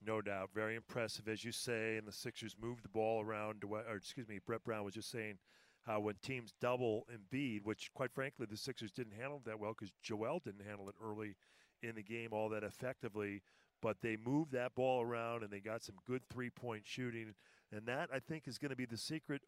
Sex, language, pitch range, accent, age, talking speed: male, English, 105-125 Hz, American, 40-59, 220 wpm